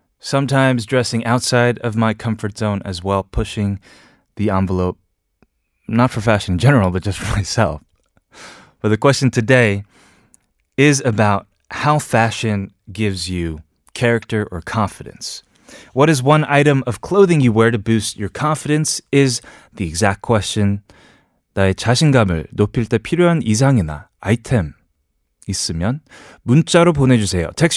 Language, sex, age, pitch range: Korean, male, 20-39, 100-140 Hz